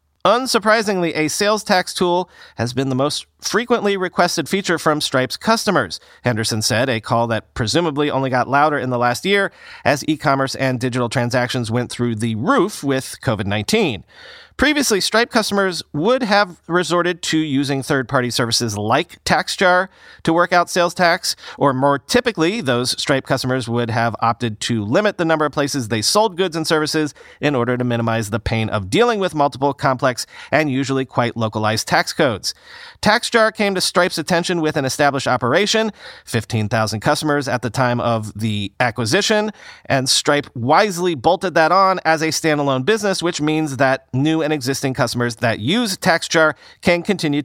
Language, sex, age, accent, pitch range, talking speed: English, male, 40-59, American, 120-180 Hz, 170 wpm